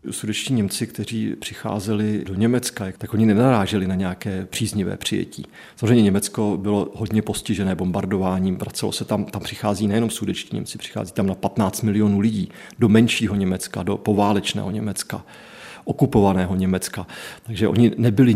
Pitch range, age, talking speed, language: 100-115 Hz, 40-59, 140 wpm, Czech